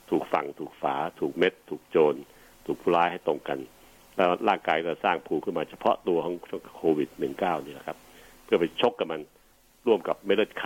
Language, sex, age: Thai, male, 60-79